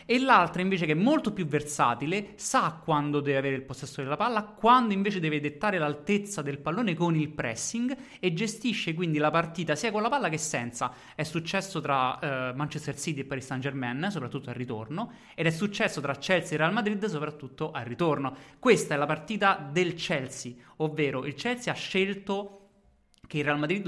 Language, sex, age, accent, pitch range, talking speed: Italian, male, 30-49, native, 140-190 Hz, 190 wpm